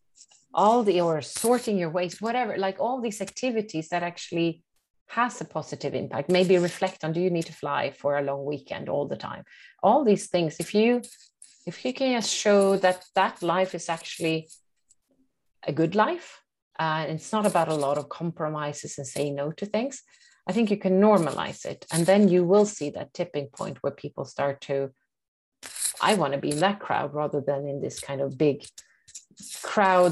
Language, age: English, 30-49